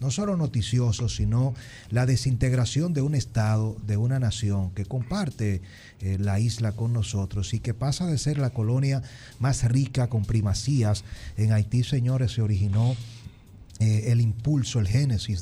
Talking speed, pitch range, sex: 155 wpm, 100-120 Hz, male